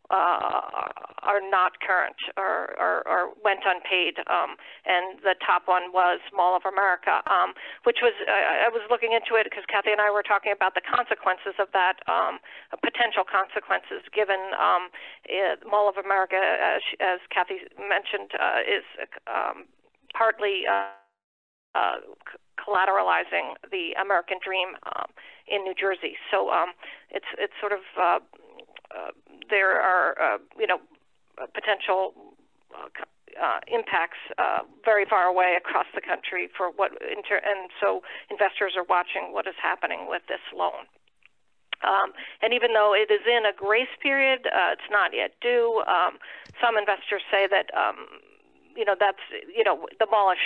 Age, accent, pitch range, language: 40-59, American, 190-245 Hz, English